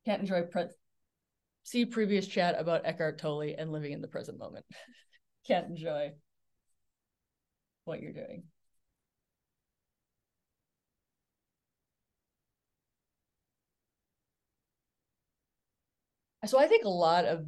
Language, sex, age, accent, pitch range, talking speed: English, female, 20-39, American, 160-195 Hz, 85 wpm